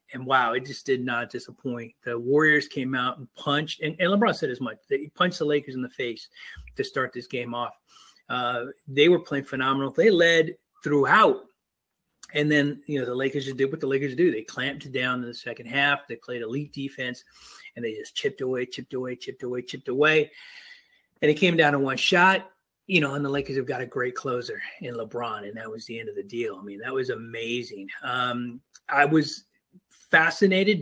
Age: 30-49